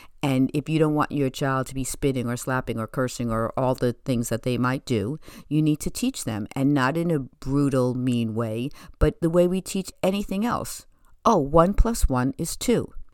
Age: 50-69